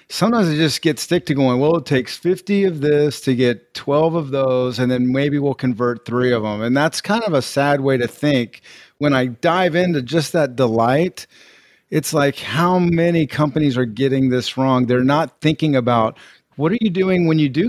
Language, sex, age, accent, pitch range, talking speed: English, male, 40-59, American, 130-165 Hz, 210 wpm